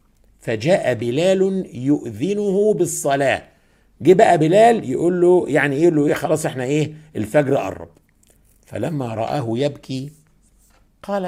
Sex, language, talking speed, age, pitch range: male, Arabic, 110 wpm, 60-79, 105-150 Hz